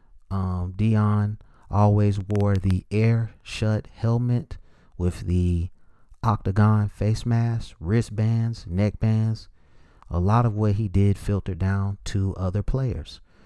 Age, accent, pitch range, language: 30-49, American, 90-110 Hz, English